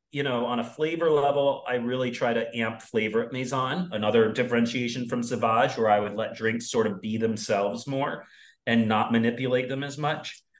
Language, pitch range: English, 115-155 Hz